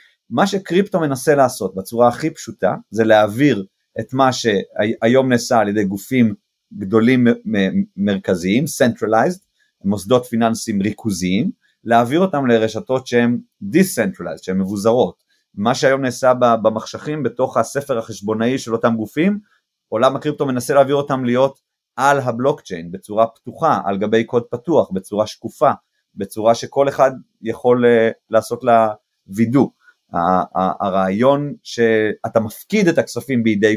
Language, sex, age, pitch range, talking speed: Hebrew, male, 30-49, 110-135 Hz, 125 wpm